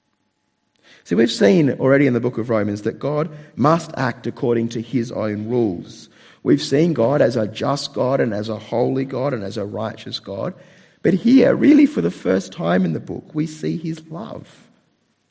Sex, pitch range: male, 105-135 Hz